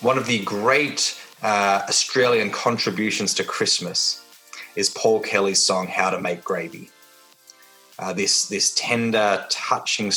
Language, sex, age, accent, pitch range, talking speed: English, male, 20-39, Australian, 95-115 Hz, 130 wpm